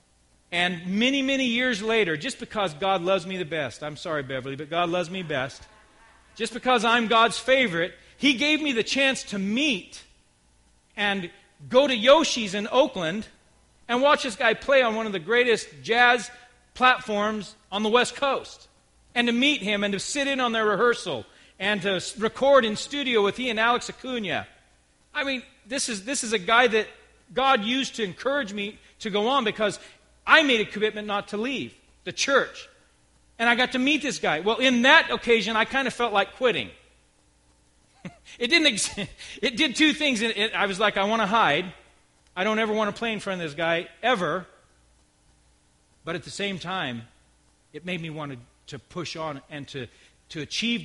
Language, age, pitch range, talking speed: English, 40-59, 155-245 Hz, 190 wpm